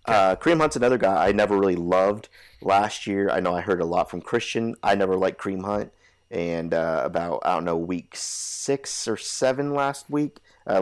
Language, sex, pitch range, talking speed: English, male, 85-105 Hz, 205 wpm